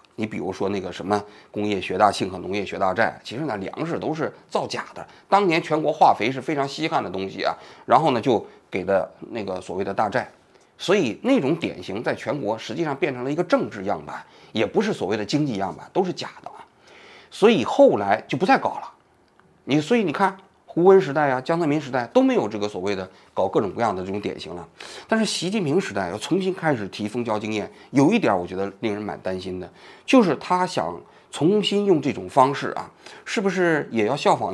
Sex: male